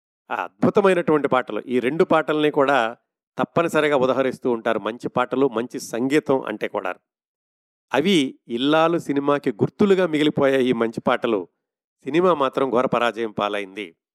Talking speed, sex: 115 wpm, male